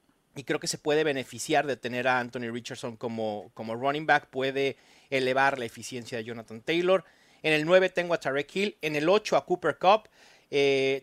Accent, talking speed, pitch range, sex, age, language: Mexican, 195 wpm, 130-195 Hz, male, 30-49, Spanish